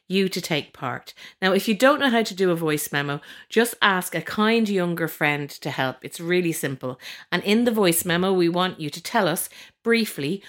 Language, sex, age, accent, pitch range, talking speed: English, female, 50-69, Irish, 145-205 Hz, 220 wpm